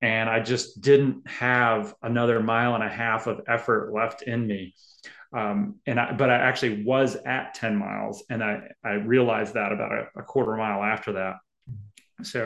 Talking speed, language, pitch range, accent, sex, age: 185 wpm, English, 115-140 Hz, American, male, 30-49